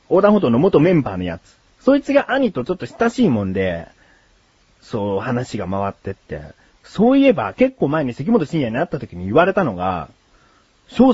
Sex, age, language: male, 40-59, Japanese